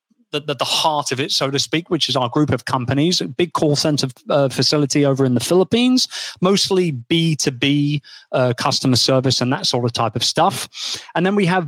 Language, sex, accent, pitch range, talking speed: English, male, British, 125-160 Hz, 210 wpm